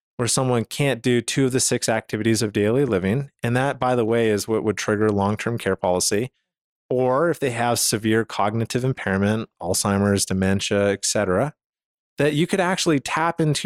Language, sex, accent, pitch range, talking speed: English, male, American, 110-130 Hz, 180 wpm